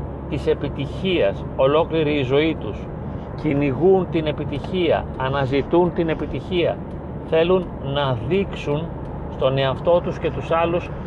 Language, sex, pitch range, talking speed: Greek, male, 135-155 Hz, 115 wpm